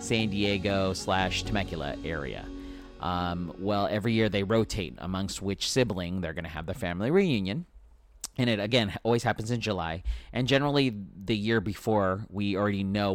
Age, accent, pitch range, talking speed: 30-49, American, 90-110 Hz, 165 wpm